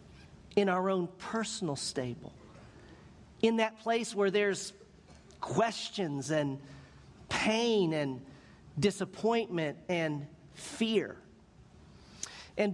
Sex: male